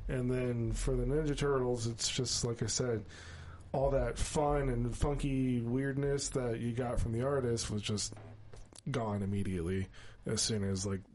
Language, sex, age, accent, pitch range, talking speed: English, male, 20-39, American, 110-130 Hz, 165 wpm